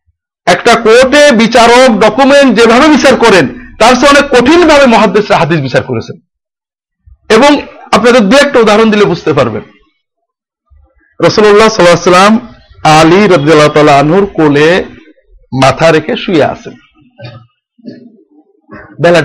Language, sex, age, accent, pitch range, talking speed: Bengali, male, 50-69, native, 150-235 Hz, 105 wpm